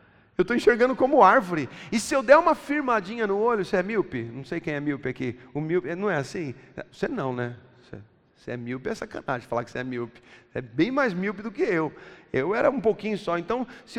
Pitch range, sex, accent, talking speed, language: 180-280 Hz, male, Brazilian, 240 wpm, Portuguese